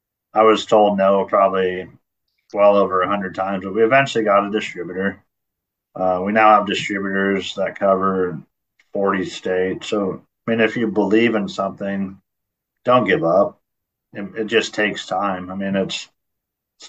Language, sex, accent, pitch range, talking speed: English, male, American, 95-105 Hz, 160 wpm